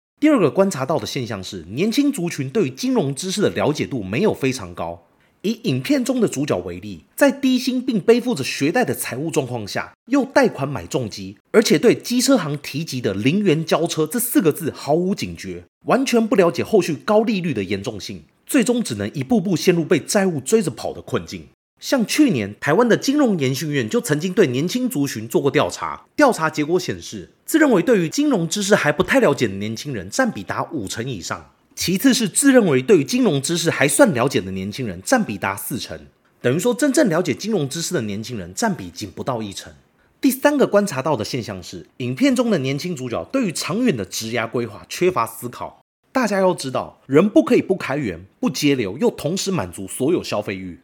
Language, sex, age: Chinese, male, 30-49